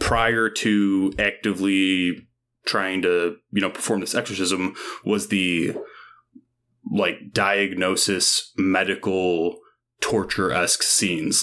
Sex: male